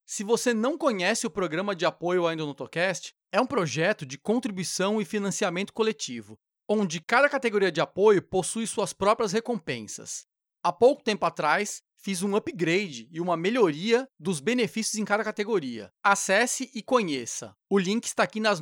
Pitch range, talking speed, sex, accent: 175-220 Hz, 160 wpm, male, Brazilian